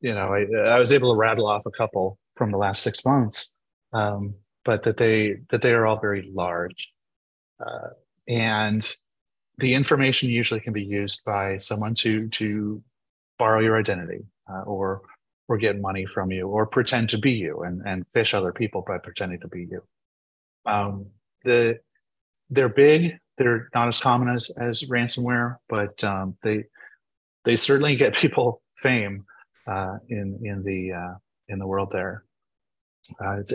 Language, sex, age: English, male, 30-49